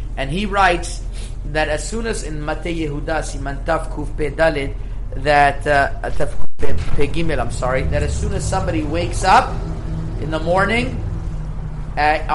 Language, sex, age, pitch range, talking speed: English, male, 30-49, 130-170 Hz, 105 wpm